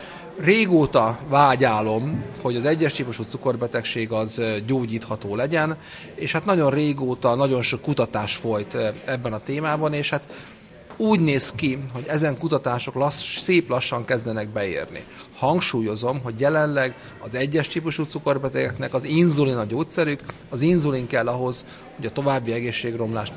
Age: 30-49